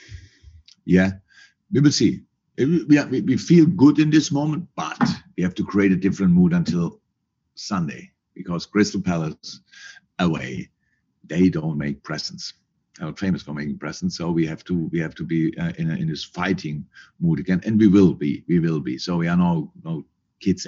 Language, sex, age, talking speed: English, male, 50-69, 185 wpm